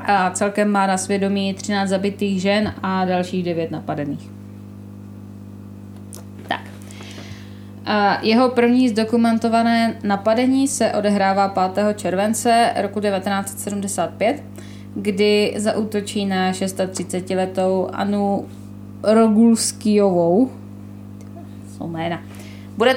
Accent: native